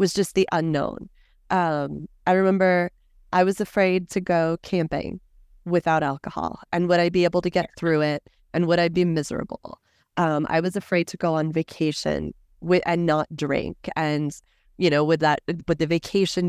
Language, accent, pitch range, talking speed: English, American, 155-185 Hz, 180 wpm